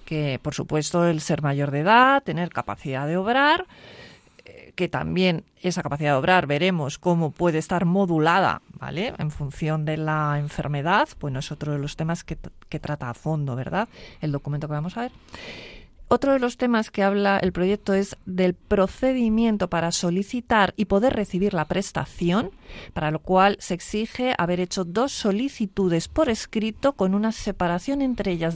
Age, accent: 40-59, Spanish